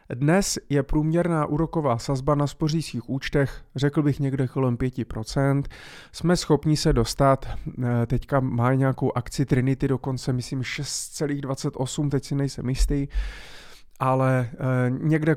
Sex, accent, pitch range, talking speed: male, native, 125-150 Hz, 120 wpm